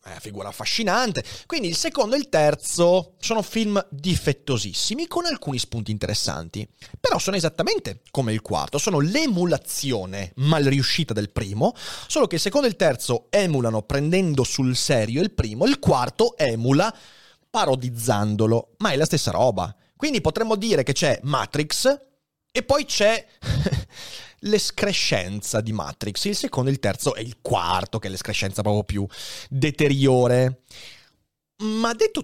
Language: Italian